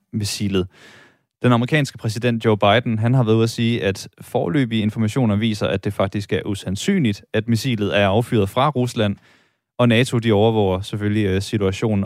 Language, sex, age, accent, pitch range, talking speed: Danish, male, 20-39, native, 100-120 Hz, 165 wpm